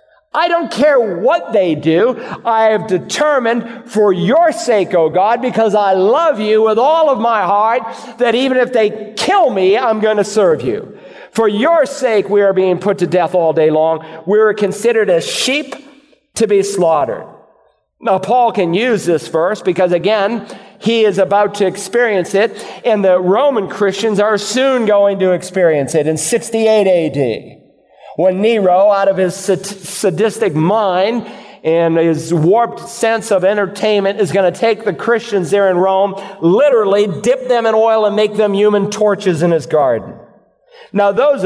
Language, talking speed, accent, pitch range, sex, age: English, 170 wpm, American, 185-230 Hz, male, 50-69